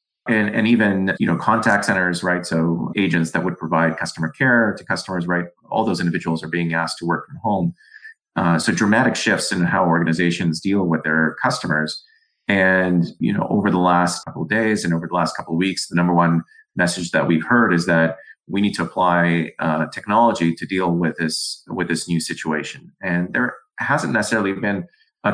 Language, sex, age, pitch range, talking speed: English, male, 30-49, 85-95 Hz, 195 wpm